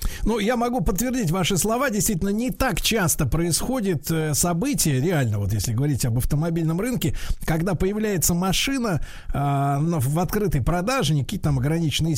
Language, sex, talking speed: Russian, male, 145 wpm